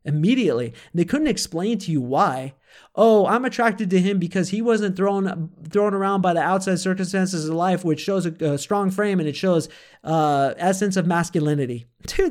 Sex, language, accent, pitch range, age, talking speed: male, English, American, 140-175 Hz, 30-49, 185 wpm